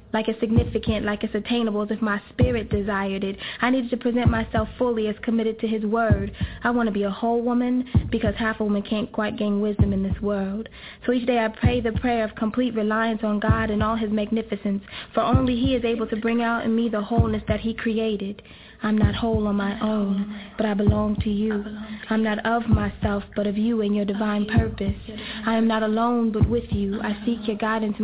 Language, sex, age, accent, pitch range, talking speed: English, female, 20-39, American, 205-225 Hz, 225 wpm